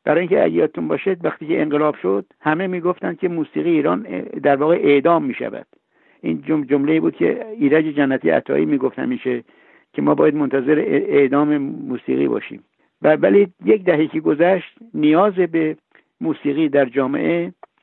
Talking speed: 145 wpm